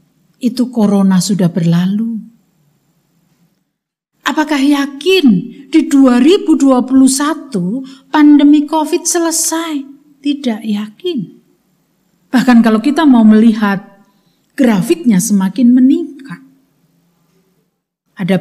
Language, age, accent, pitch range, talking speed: Indonesian, 50-69, native, 180-265 Hz, 70 wpm